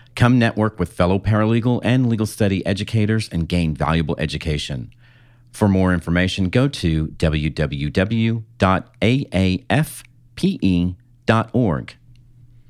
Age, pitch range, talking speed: 40-59, 90-120 Hz, 90 wpm